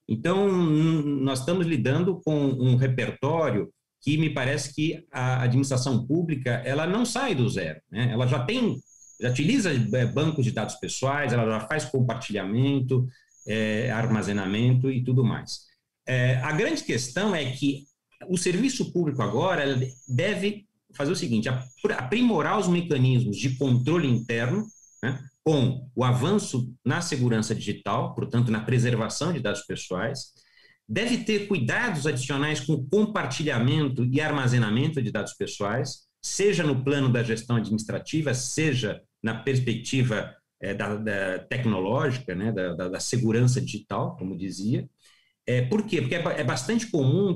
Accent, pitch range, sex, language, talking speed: Brazilian, 115-155 Hz, male, Portuguese, 135 wpm